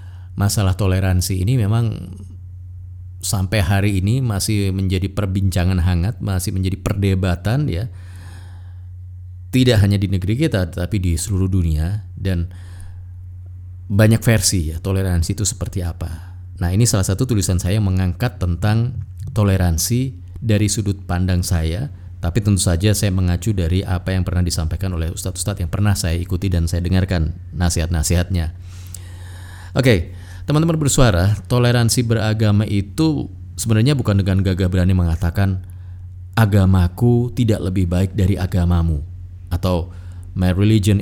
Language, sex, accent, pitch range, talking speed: Indonesian, male, native, 90-105 Hz, 130 wpm